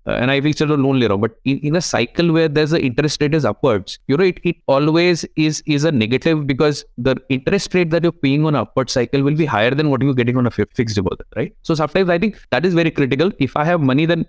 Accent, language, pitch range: Indian, English, 125-165 Hz